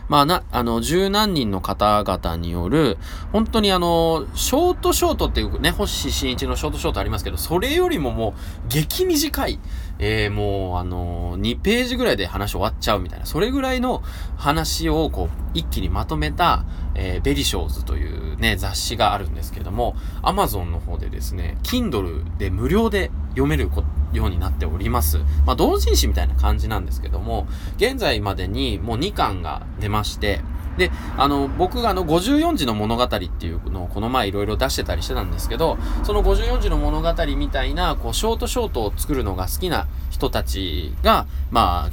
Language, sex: Japanese, male